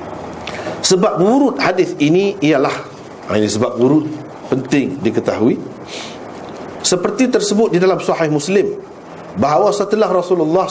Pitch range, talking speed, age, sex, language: 125-190 Hz, 105 wpm, 50-69, male, Malay